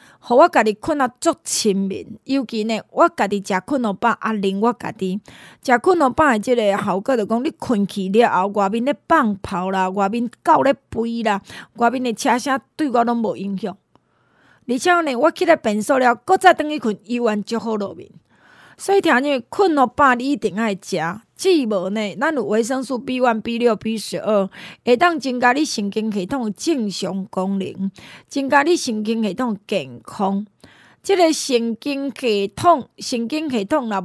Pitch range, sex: 210-275 Hz, female